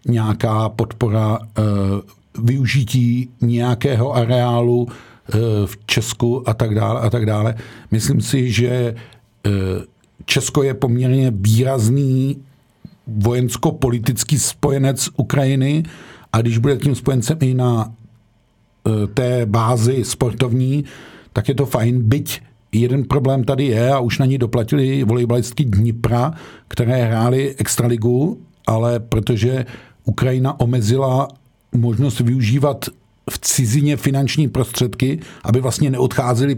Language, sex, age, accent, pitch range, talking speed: Czech, male, 50-69, native, 115-135 Hz, 115 wpm